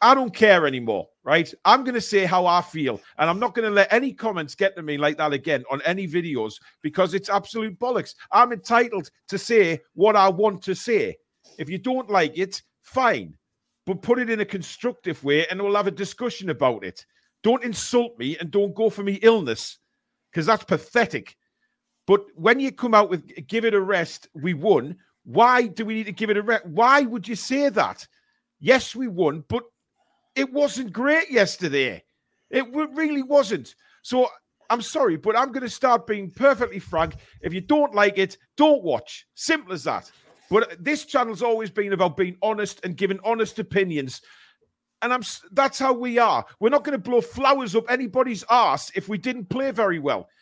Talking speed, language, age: 195 wpm, English, 50-69